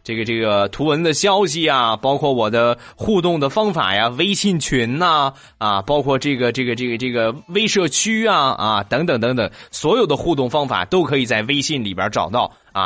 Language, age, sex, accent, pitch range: Chinese, 20-39, male, native, 115-150 Hz